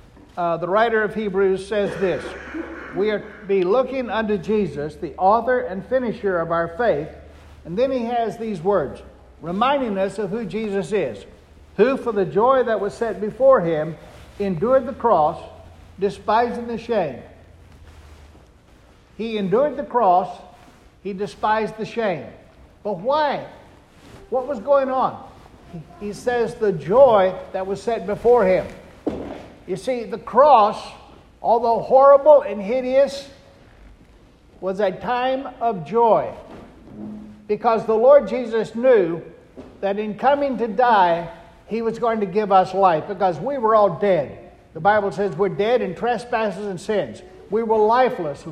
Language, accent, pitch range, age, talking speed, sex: English, American, 190-240 Hz, 60-79, 145 wpm, male